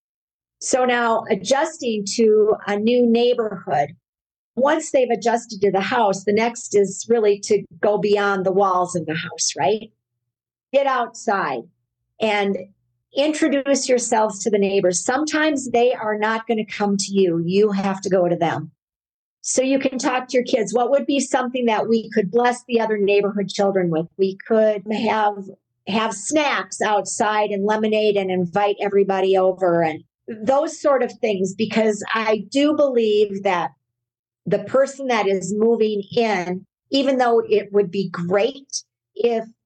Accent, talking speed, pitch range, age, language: American, 155 wpm, 195-235 Hz, 50-69, English